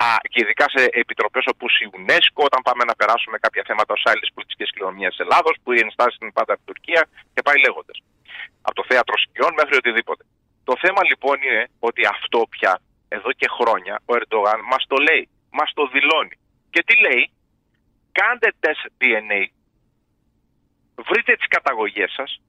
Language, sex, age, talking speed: Greek, male, 30-49, 170 wpm